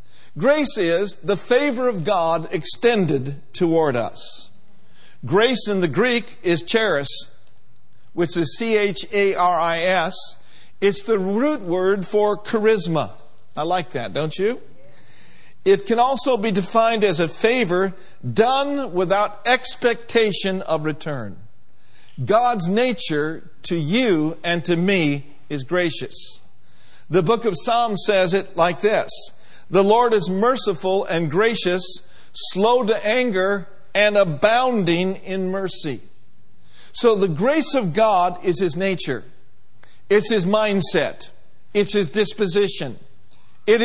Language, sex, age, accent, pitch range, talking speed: English, male, 50-69, American, 160-215 Hz, 120 wpm